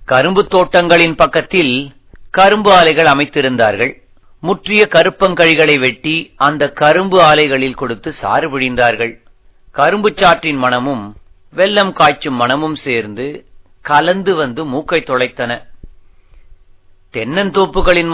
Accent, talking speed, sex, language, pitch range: native, 90 wpm, male, Tamil, 125-175 Hz